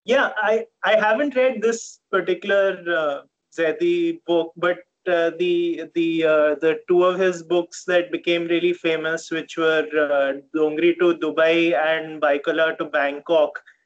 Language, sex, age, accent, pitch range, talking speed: English, male, 20-39, Indian, 155-185 Hz, 145 wpm